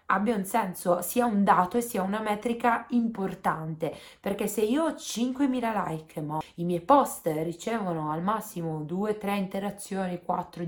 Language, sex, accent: Italian, female, native